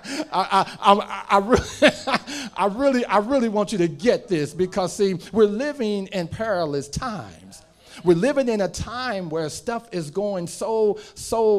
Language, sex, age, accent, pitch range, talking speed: English, male, 40-59, American, 145-215 Hz, 165 wpm